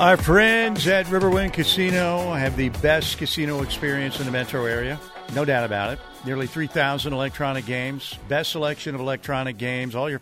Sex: male